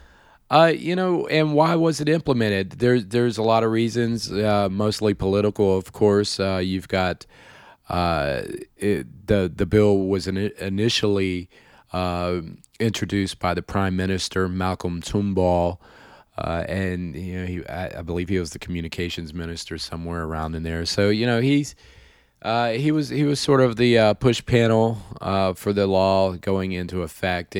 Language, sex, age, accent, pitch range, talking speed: English, male, 40-59, American, 85-105 Hz, 165 wpm